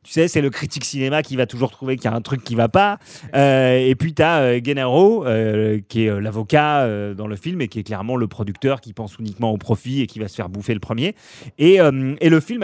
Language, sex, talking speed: French, male, 280 wpm